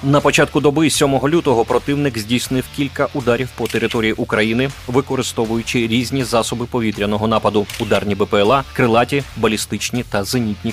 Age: 30-49